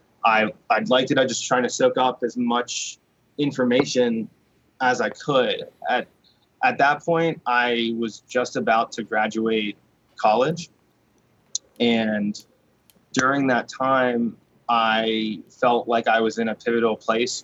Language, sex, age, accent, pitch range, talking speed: English, male, 20-39, American, 110-135 Hz, 140 wpm